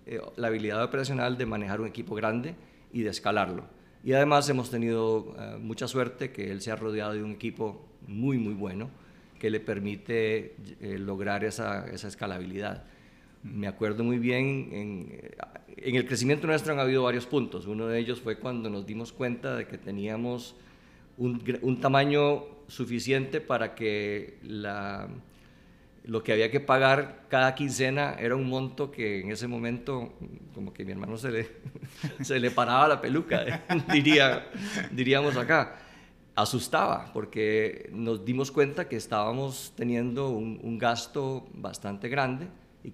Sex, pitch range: male, 110-130 Hz